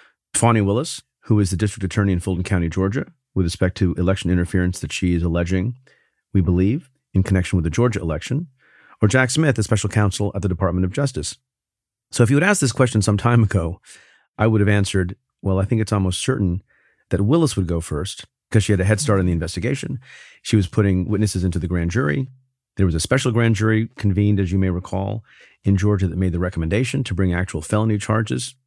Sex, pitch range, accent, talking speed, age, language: male, 95-120 Hz, American, 215 wpm, 40-59, English